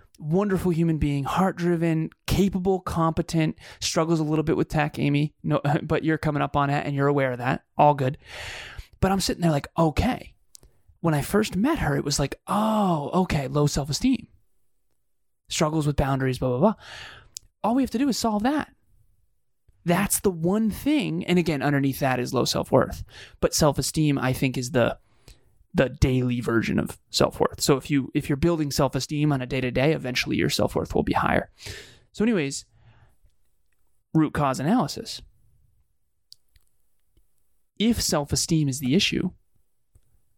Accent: American